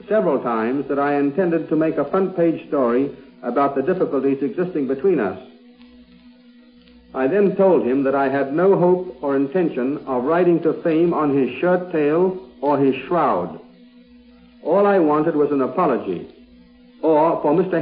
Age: 60-79